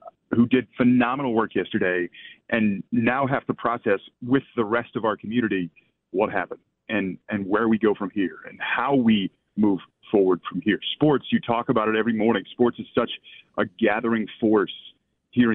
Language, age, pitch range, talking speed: English, 40-59, 100-125 Hz, 180 wpm